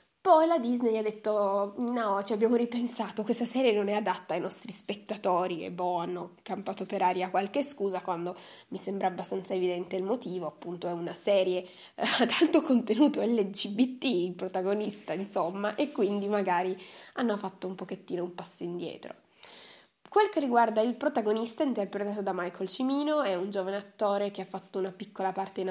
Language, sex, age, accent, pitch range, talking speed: Italian, female, 20-39, native, 190-235 Hz, 170 wpm